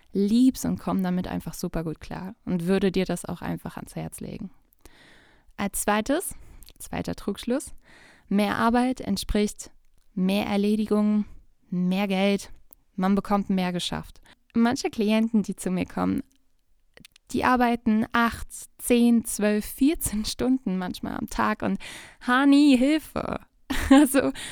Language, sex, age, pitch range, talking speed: German, female, 20-39, 195-250 Hz, 125 wpm